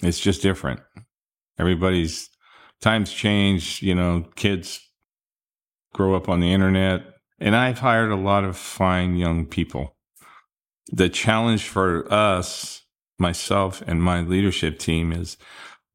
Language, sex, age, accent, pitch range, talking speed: English, male, 50-69, American, 85-100 Hz, 125 wpm